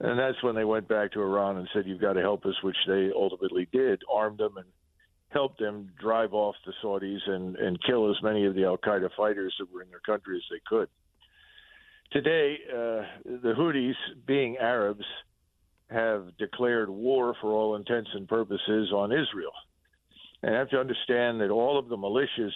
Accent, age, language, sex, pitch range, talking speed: American, 50-69, English, male, 100-120 Hz, 190 wpm